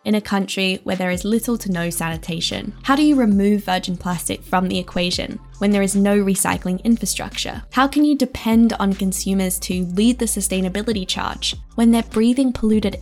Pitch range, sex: 185-235 Hz, female